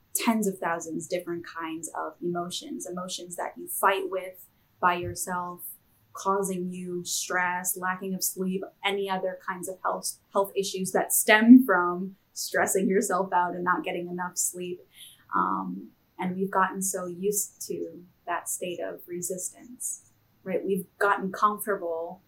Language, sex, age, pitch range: English, female, 10-29, 175-200 Hz